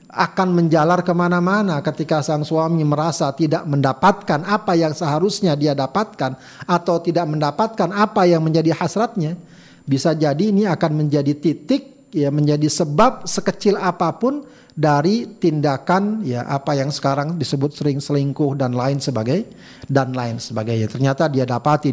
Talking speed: 135 wpm